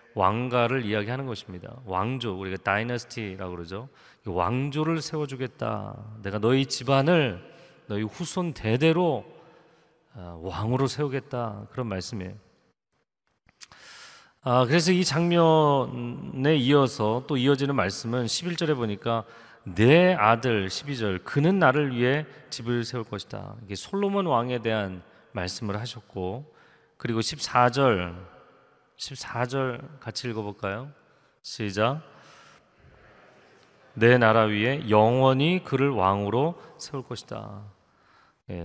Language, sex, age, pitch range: Korean, male, 30-49, 105-140 Hz